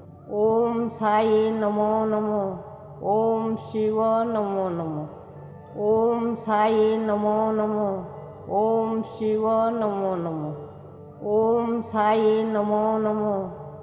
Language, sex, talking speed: Hindi, female, 80 wpm